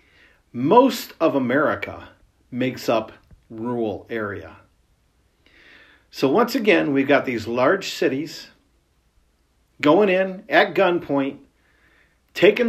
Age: 50-69